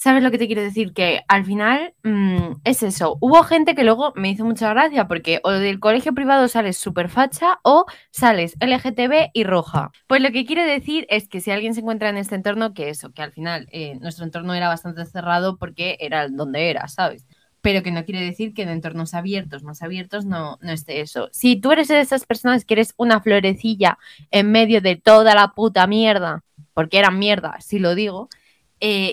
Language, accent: Spanish, Spanish